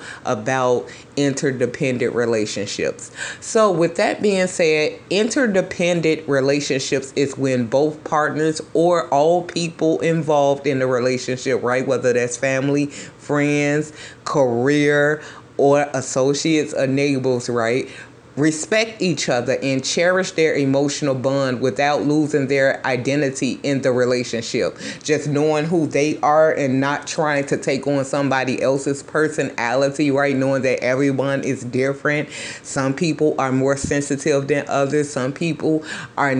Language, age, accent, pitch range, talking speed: English, 30-49, American, 135-155 Hz, 125 wpm